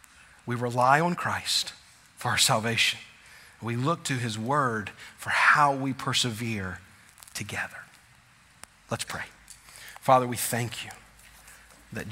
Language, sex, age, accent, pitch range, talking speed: English, male, 40-59, American, 100-125 Hz, 120 wpm